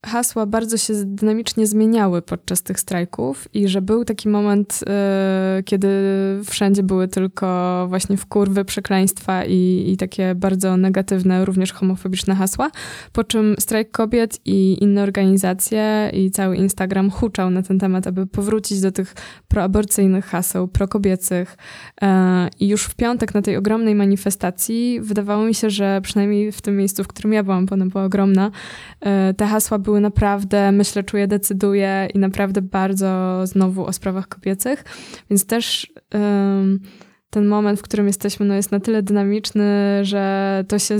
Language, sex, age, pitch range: Polish, female, 20-39, 190-210 Hz